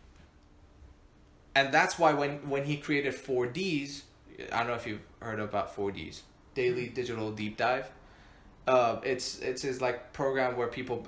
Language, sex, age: English, male, 20-39